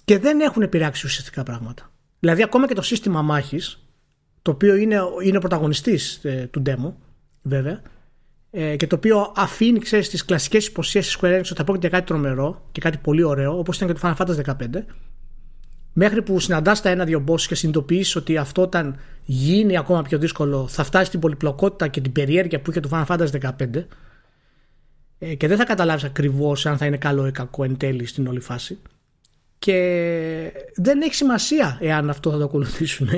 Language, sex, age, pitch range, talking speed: Greek, male, 30-49, 145-210 Hz, 180 wpm